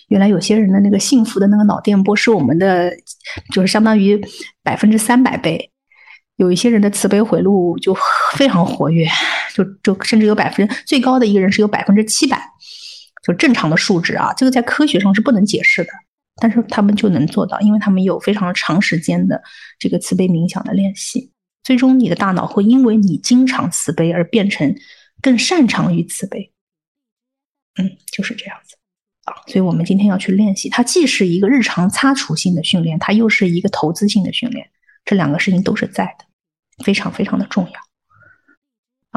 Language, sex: Chinese, female